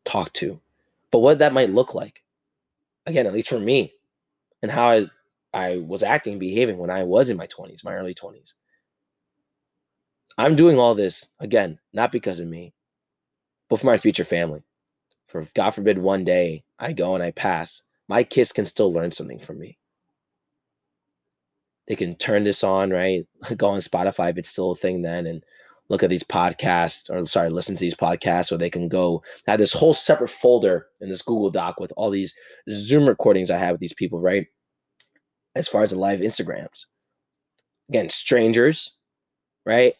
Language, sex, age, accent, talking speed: English, male, 20-39, American, 185 wpm